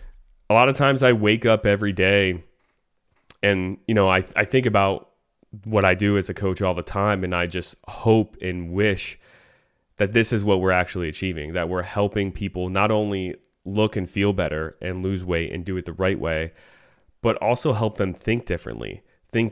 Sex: male